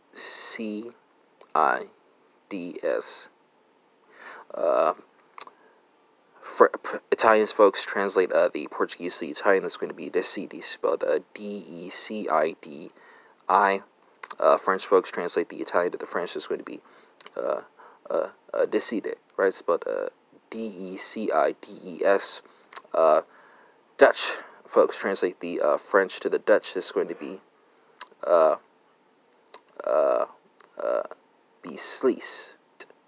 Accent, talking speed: American, 105 wpm